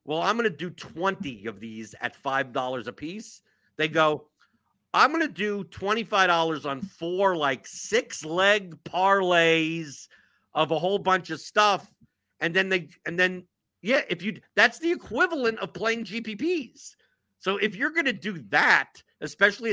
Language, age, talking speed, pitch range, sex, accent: English, 50-69, 160 wpm, 145-205 Hz, male, American